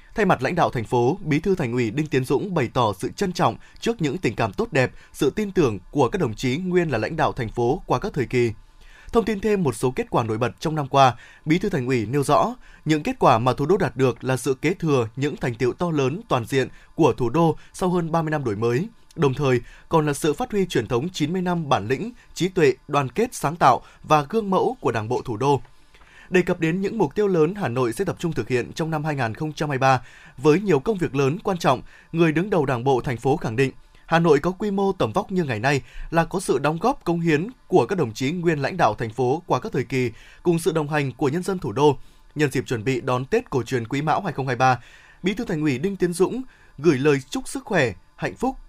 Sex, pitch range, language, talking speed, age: male, 130-180 Hz, Vietnamese, 260 wpm, 20-39